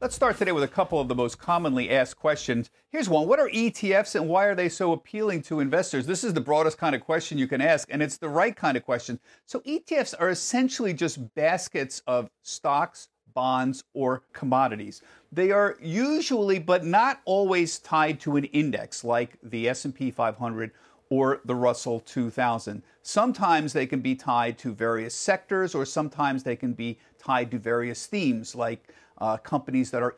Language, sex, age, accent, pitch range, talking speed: English, male, 50-69, American, 125-175 Hz, 185 wpm